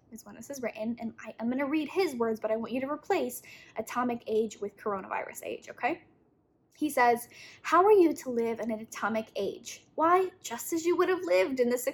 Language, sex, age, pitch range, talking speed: English, female, 10-29, 230-320 Hz, 225 wpm